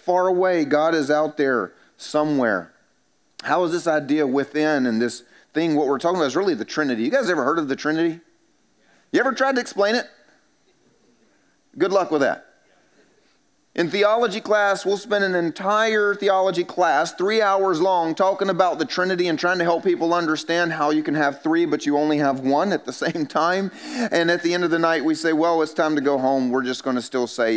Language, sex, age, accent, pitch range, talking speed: English, male, 30-49, American, 135-180 Hz, 210 wpm